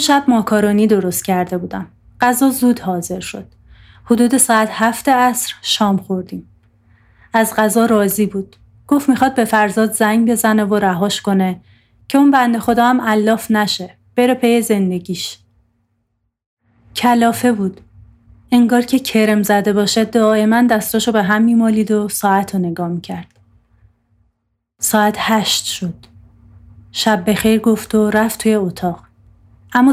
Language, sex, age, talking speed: Persian, female, 30-49, 130 wpm